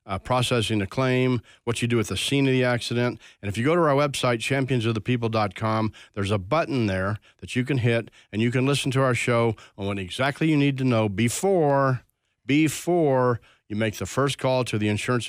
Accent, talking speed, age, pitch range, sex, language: American, 210 wpm, 40-59, 110-130 Hz, male, English